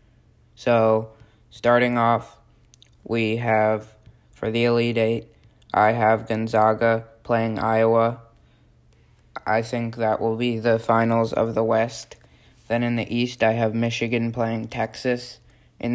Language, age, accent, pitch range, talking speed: English, 20-39, American, 110-120 Hz, 130 wpm